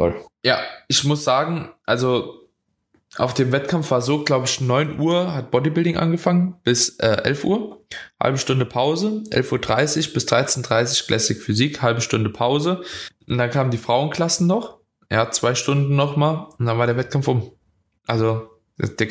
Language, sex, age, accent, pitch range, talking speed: German, male, 20-39, German, 110-145 Hz, 165 wpm